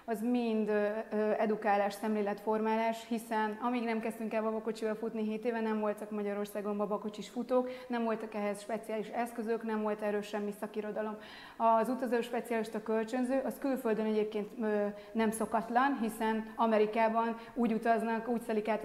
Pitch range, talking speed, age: 215-230 Hz, 150 wpm, 30-49